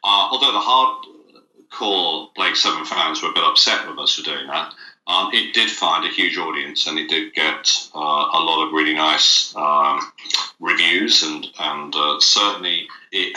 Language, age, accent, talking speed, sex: English, 40-59, British, 180 wpm, male